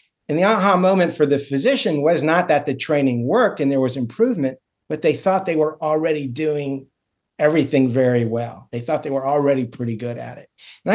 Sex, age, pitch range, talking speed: male, 50-69, 125-150 Hz, 205 wpm